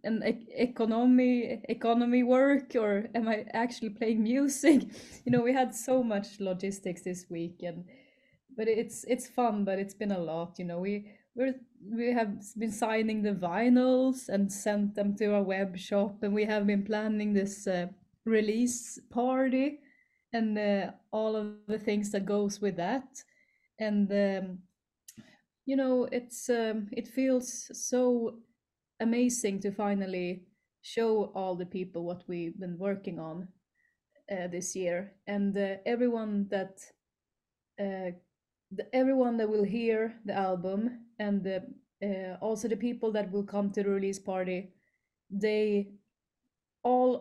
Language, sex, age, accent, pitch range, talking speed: English, female, 30-49, Swedish, 195-240 Hz, 145 wpm